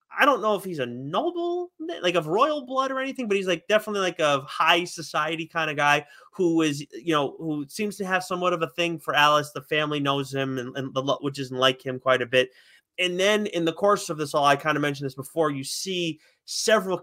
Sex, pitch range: male, 140-185 Hz